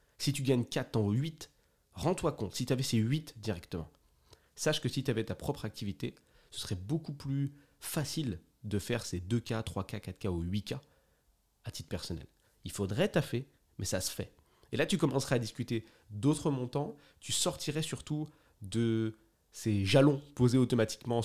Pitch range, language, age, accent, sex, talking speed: 105-135 Hz, French, 30-49, French, male, 170 wpm